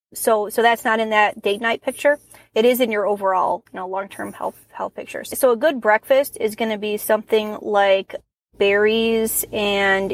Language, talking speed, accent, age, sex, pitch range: English, 190 wpm, American, 30-49, female, 195-230 Hz